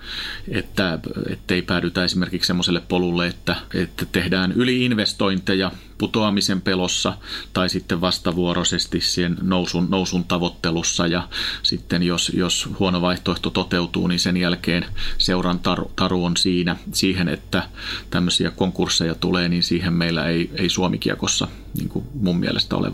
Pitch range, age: 90-100 Hz, 30-49